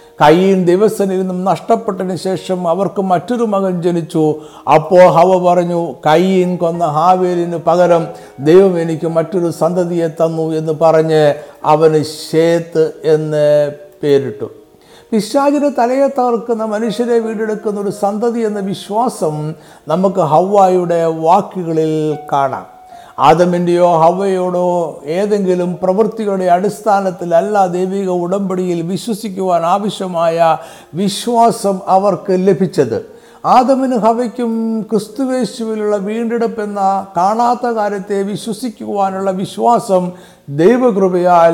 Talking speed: 85 wpm